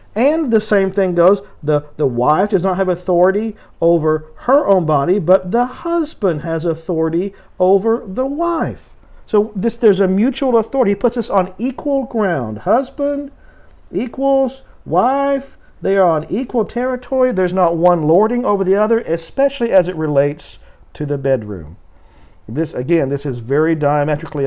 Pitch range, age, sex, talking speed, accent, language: 125-195 Hz, 50-69, male, 155 wpm, American, English